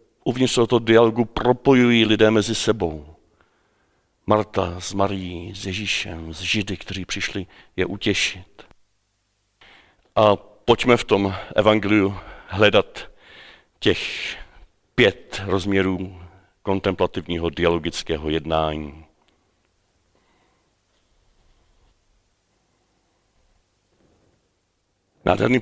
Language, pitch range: Czech, 95-120 Hz